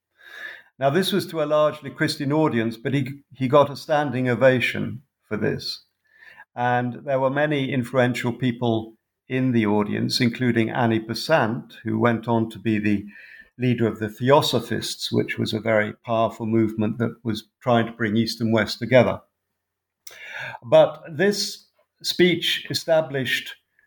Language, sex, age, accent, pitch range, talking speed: English, male, 50-69, British, 115-135 Hz, 145 wpm